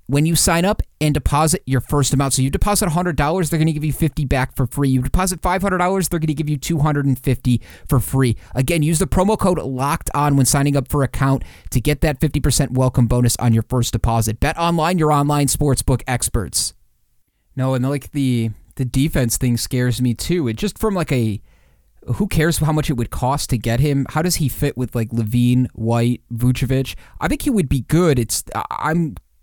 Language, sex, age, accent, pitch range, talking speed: English, male, 30-49, American, 120-145 Hz, 225 wpm